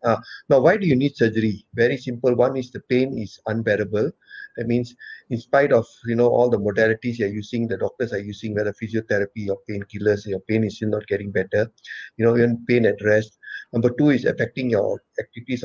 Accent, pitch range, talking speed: Indian, 110-125 Hz, 210 wpm